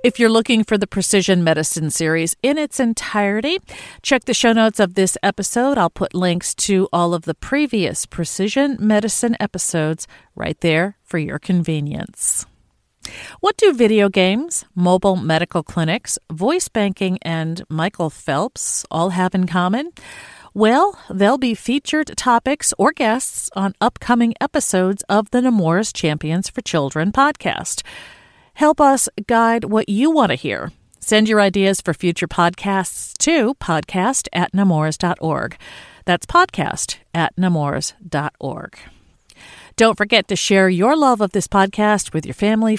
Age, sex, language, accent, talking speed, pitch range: 40-59, female, English, American, 140 wpm, 175-240 Hz